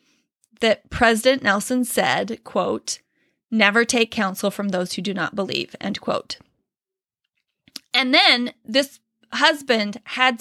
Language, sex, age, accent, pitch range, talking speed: English, female, 30-49, American, 210-260 Hz, 120 wpm